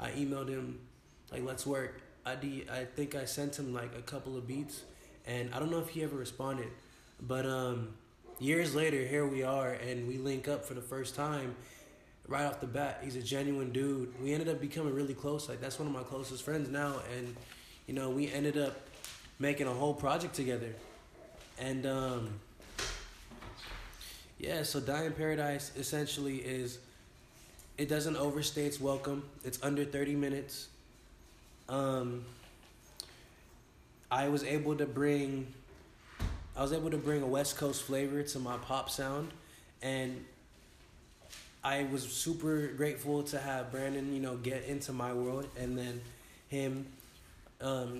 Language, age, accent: English, 20-39, American